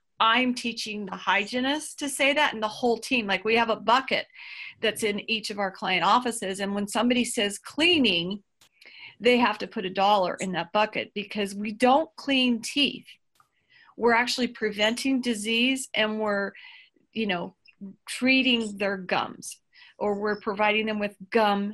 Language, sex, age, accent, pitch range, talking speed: English, female, 40-59, American, 200-245 Hz, 165 wpm